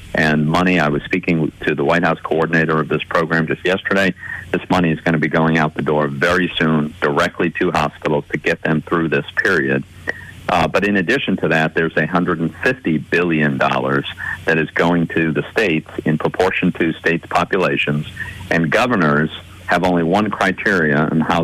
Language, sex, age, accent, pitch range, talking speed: English, male, 50-69, American, 75-90 Hz, 180 wpm